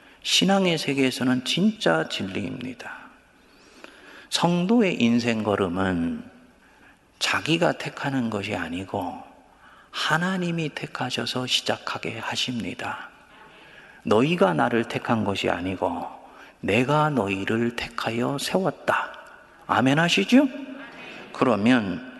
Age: 40-59